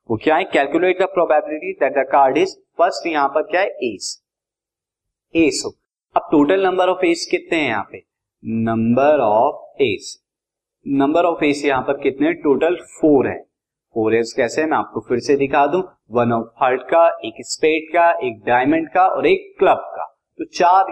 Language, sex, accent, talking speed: Hindi, male, native, 185 wpm